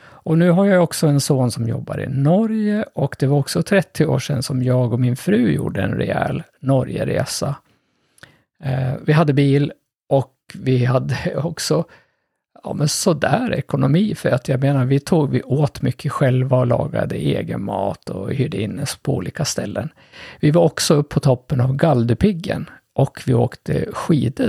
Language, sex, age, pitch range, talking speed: Swedish, male, 50-69, 130-155 Hz, 175 wpm